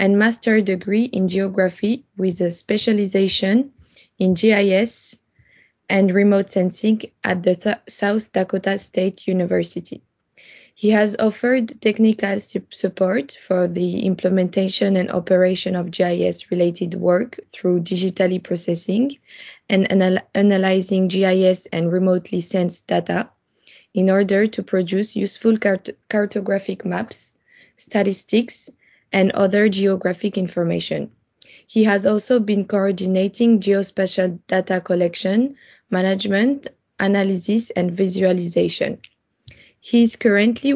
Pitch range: 185-215 Hz